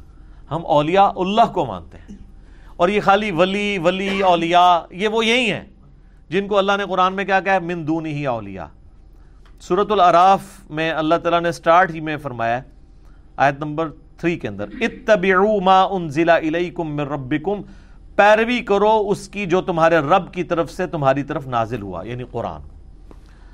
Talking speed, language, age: 165 wpm, Urdu, 40-59